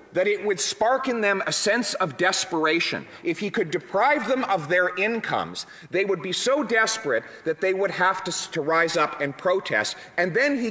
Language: English